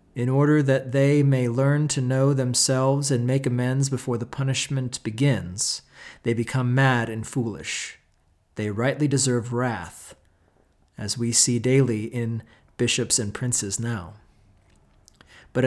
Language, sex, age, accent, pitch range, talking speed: English, male, 40-59, American, 115-140 Hz, 135 wpm